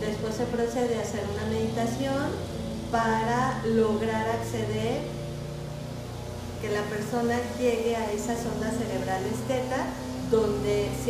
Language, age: Spanish, 40-59